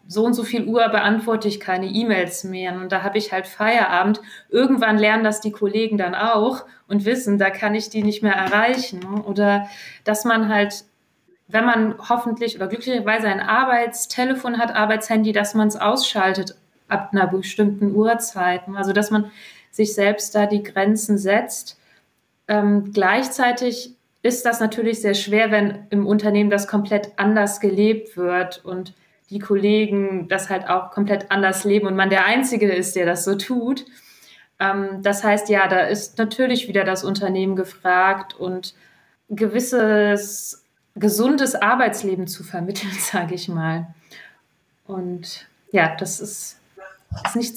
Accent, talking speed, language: German, 150 wpm, German